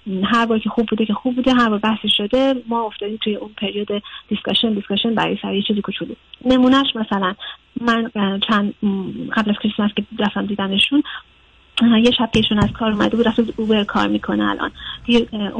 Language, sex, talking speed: Persian, female, 185 wpm